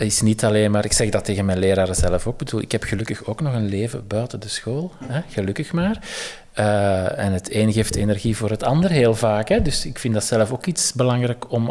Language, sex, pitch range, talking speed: Dutch, male, 100-125 Hz, 230 wpm